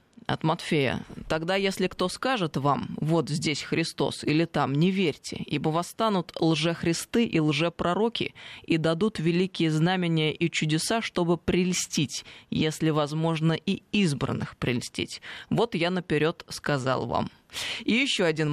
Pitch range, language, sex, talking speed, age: 155-185 Hz, Russian, female, 130 wpm, 20-39